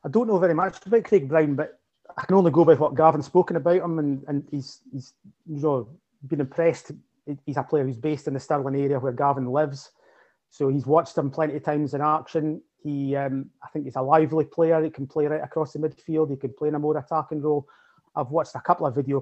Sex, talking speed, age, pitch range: male, 235 wpm, 30-49, 140-160 Hz